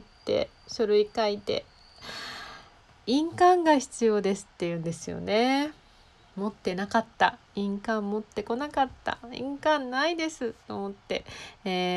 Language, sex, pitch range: Japanese, female, 170-240 Hz